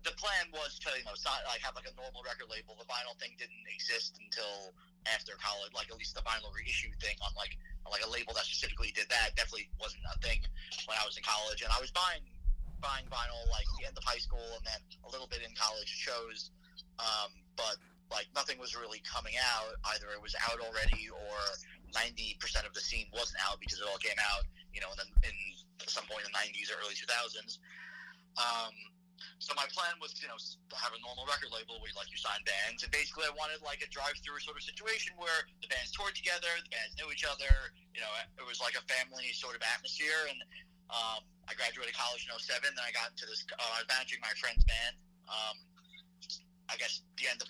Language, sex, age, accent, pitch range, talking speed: English, male, 30-49, American, 105-170 Hz, 230 wpm